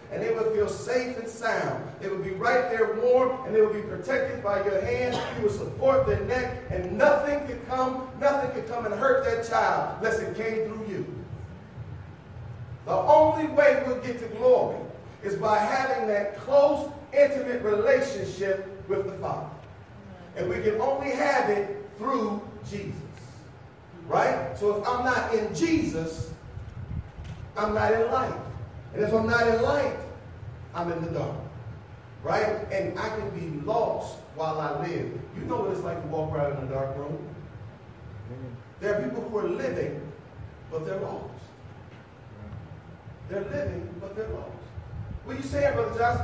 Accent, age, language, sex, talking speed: American, 40-59, English, male, 165 wpm